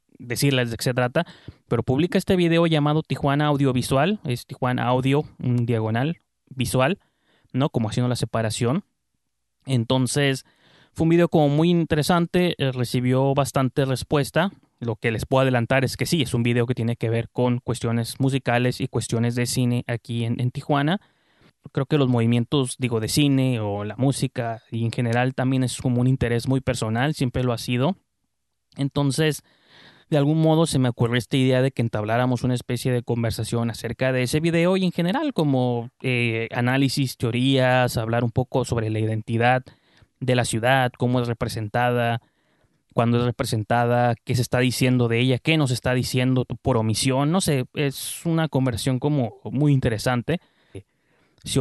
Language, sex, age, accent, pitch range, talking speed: Spanish, male, 20-39, Mexican, 120-140 Hz, 170 wpm